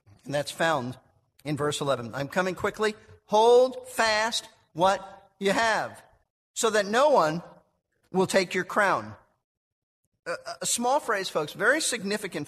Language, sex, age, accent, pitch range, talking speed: English, male, 50-69, American, 170-245 Hz, 135 wpm